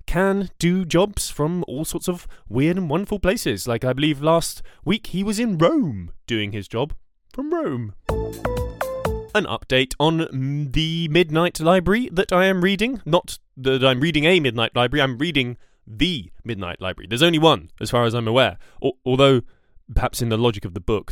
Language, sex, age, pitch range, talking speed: English, male, 20-39, 110-165 Hz, 180 wpm